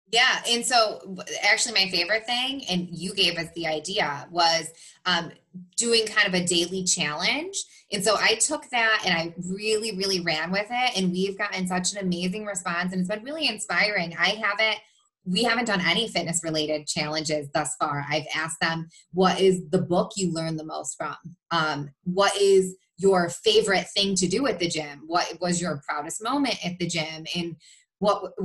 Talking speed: 190 wpm